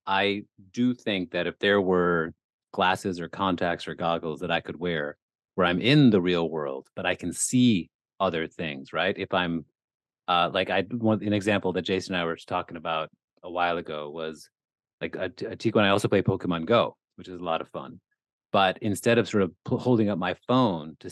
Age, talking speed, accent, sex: 30-49, 205 wpm, American, male